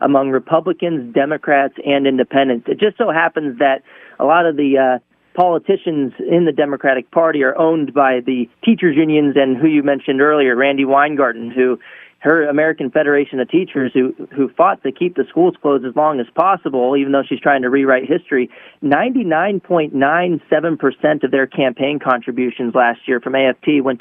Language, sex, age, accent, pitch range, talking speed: English, male, 40-59, American, 135-165 Hz, 170 wpm